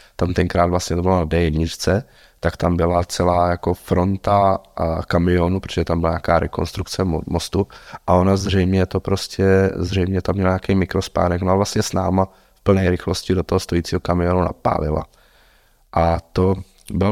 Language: Czech